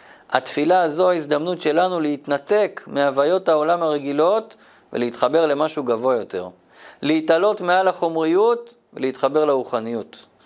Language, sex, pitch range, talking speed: Hebrew, male, 155-215 Hz, 105 wpm